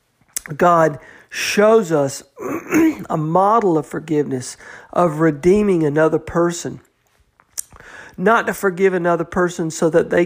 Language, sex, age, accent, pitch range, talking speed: English, male, 50-69, American, 150-175 Hz, 110 wpm